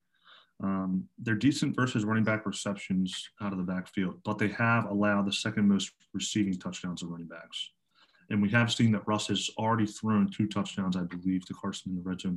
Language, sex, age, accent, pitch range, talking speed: English, male, 30-49, American, 95-120 Hz, 205 wpm